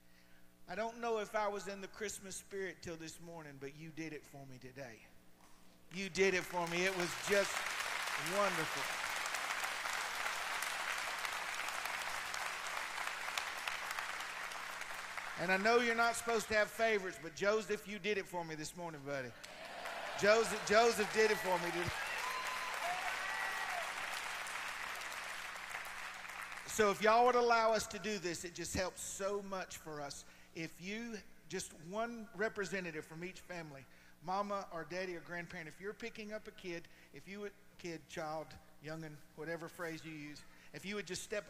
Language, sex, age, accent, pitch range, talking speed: English, male, 50-69, American, 165-210 Hz, 150 wpm